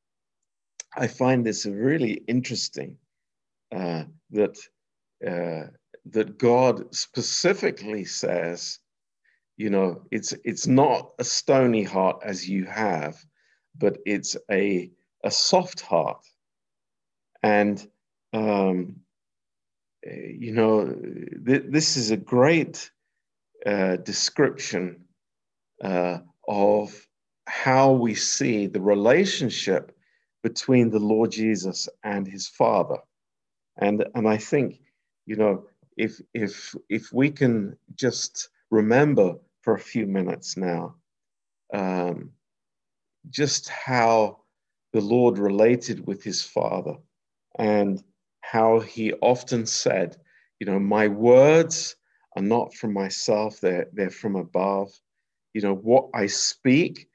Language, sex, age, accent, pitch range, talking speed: Romanian, male, 50-69, British, 95-120 Hz, 110 wpm